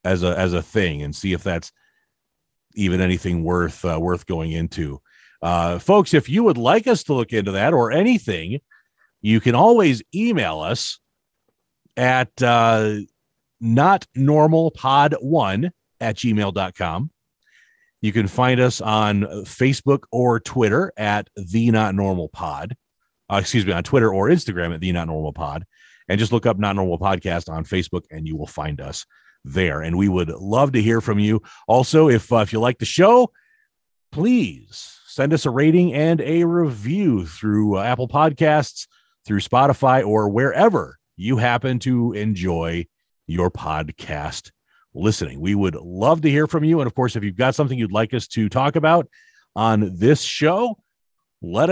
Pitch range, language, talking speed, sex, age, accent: 95-155 Hz, English, 170 wpm, male, 40-59, American